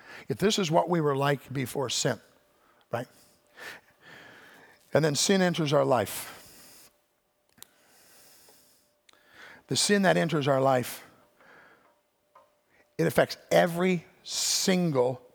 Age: 50-69